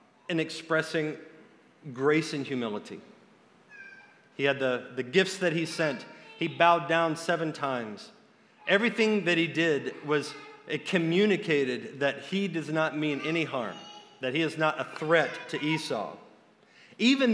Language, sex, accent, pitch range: English, male, American, 165-215 Hz